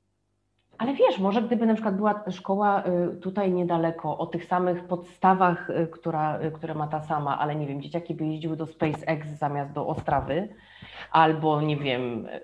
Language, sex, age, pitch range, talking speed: Polish, female, 30-49, 155-195 Hz, 155 wpm